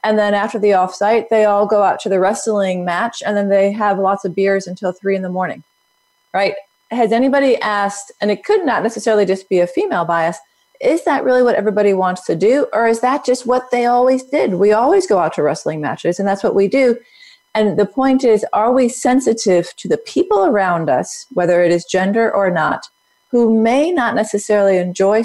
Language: English